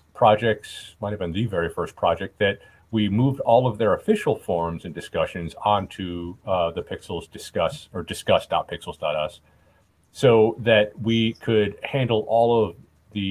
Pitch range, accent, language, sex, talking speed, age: 90-115 Hz, American, English, male, 150 wpm, 40-59